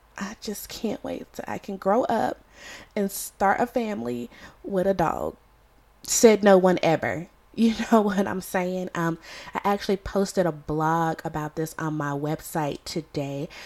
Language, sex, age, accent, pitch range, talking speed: English, female, 20-39, American, 165-225 Hz, 165 wpm